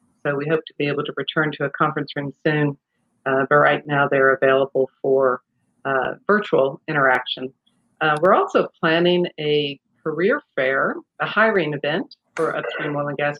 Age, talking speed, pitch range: 50-69, 170 wpm, 140-160 Hz